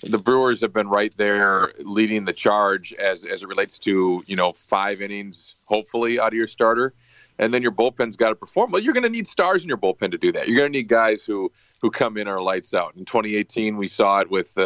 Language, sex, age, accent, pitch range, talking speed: English, male, 40-59, American, 105-125 Hz, 250 wpm